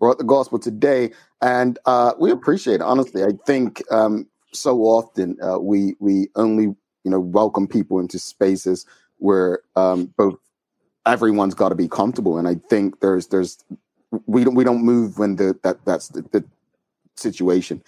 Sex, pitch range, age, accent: male, 95-110 Hz, 30-49, American